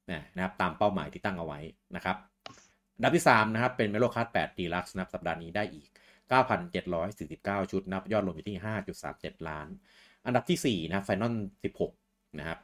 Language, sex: Thai, male